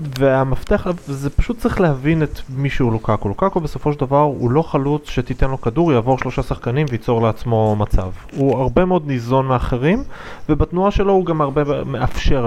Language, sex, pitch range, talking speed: Hebrew, male, 110-145 Hz, 180 wpm